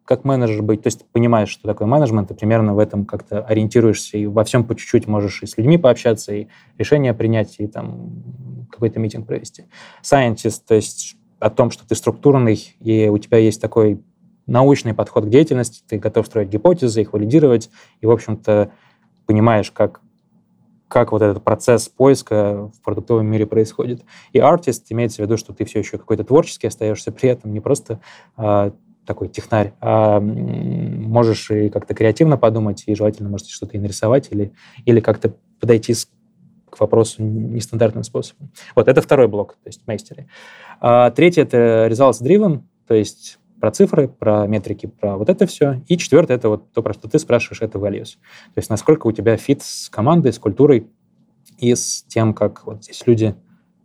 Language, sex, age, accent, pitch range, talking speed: Russian, male, 20-39, native, 105-120 Hz, 175 wpm